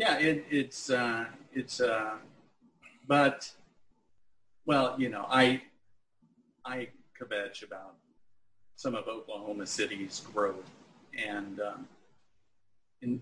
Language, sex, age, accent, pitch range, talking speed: English, male, 40-59, American, 100-145 Hz, 95 wpm